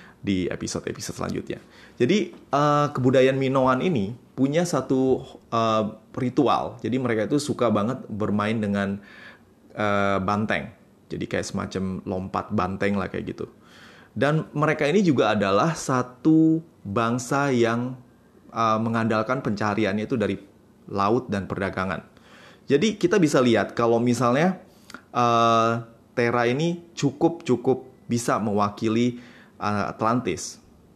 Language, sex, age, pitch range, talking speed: Indonesian, male, 20-39, 105-135 Hz, 110 wpm